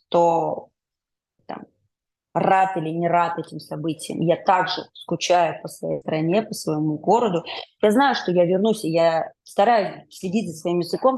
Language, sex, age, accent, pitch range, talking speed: Russian, female, 20-39, native, 165-200 Hz, 155 wpm